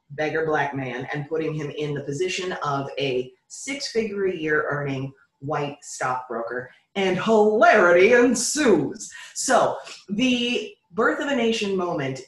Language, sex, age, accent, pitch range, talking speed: English, female, 30-49, American, 150-205 Hz, 135 wpm